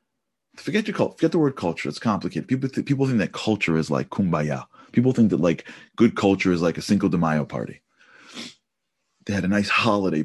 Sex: male